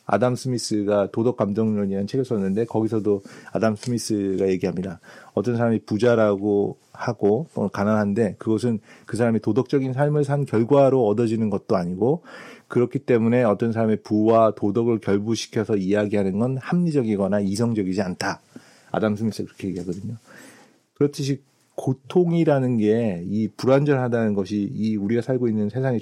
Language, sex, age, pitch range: Korean, male, 40-59, 100-125 Hz